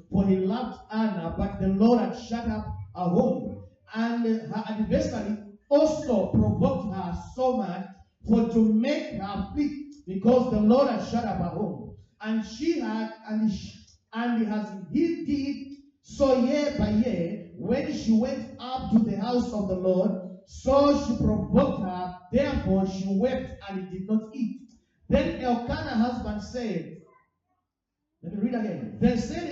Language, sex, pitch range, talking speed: English, male, 190-255 Hz, 155 wpm